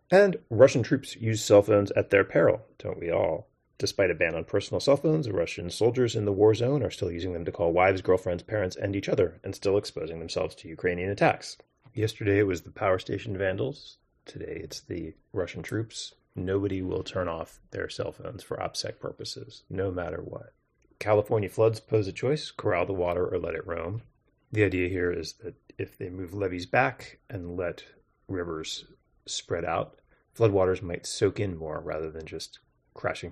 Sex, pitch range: male, 90-125 Hz